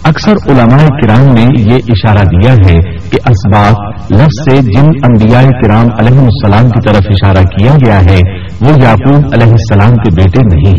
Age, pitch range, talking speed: 60-79, 95-145 Hz, 165 wpm